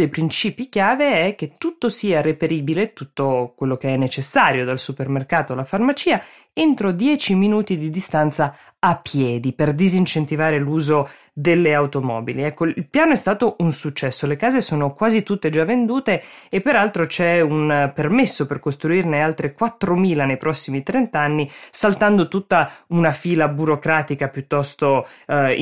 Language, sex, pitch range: Italian, female, 140-180 Hz